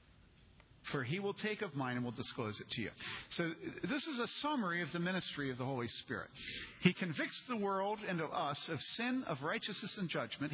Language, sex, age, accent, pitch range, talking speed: English, male, 50-69, American, 130-180 Hz, 210 wpm